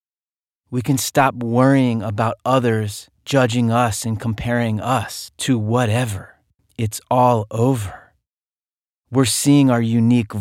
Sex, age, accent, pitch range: male, 30-49, American, 100-120 Hz